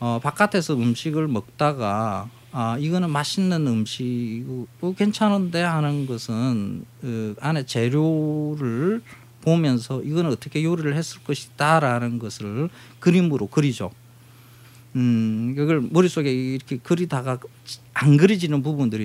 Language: Korean